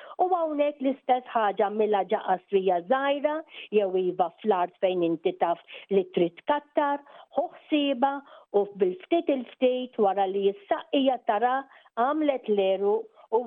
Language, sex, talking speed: English, female, 125 wpm